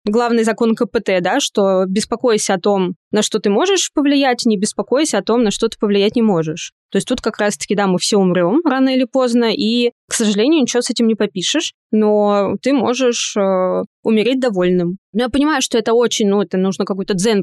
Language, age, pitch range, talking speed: Russian, 20-39, 195-240 Hz, 205 wpm